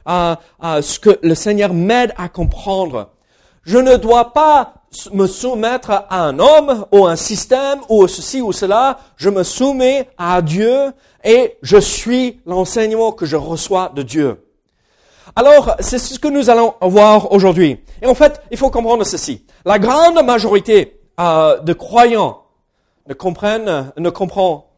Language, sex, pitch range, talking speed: French, male, 175-255 Hz, 160 wpm